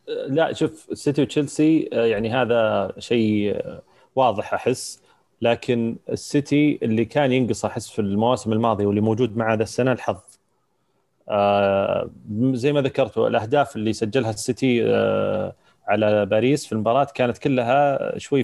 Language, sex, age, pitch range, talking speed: Arabic, male, 30-49, 110-135 Hz, 125 wpm